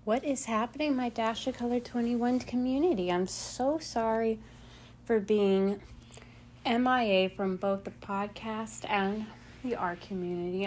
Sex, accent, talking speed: female, American, 130 wpm